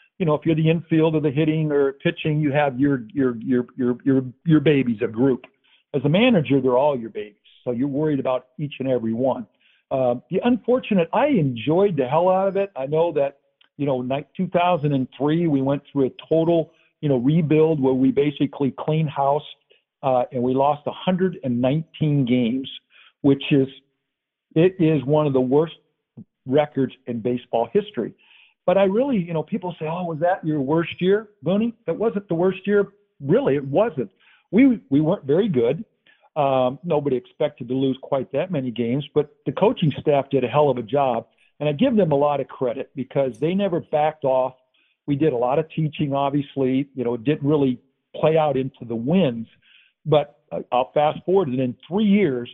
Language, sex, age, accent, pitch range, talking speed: English, male, 50-69, American, 130-165 Hz, 190 wpm